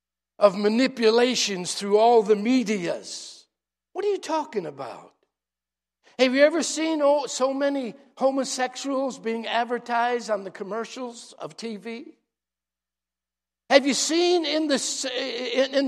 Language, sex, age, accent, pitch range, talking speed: English, male, 60-79, American, 230-310 Hz, 110 wpm